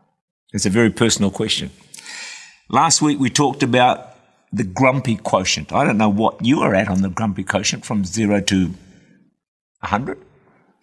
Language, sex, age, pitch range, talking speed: English, male, 50-69, 100-135 Hz, 155 wpm